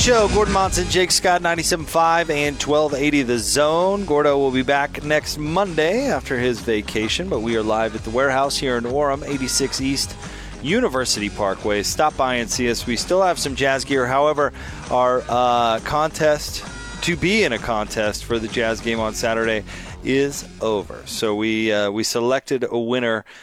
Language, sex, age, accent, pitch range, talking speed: English, male, 30-49, American, 110-140 Hz, 180 wpm